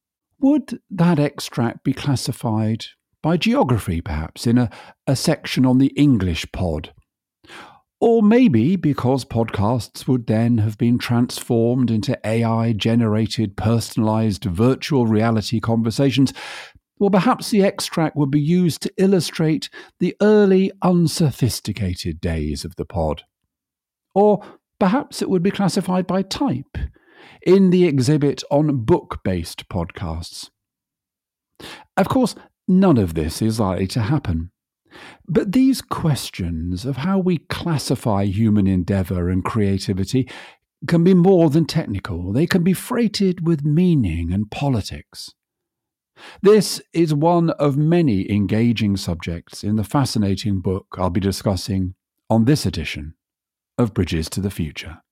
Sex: male